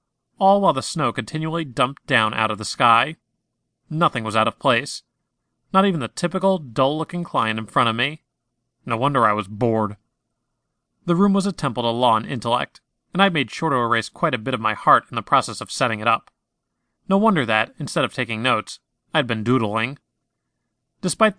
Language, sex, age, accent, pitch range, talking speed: English, male, 30-49, American, 115-150 Hz, 195 wpm